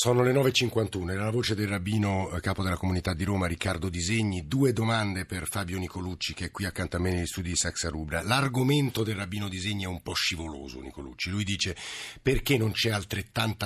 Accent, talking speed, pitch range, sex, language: native, 200 wpm, 90-110 Hz, male, Italian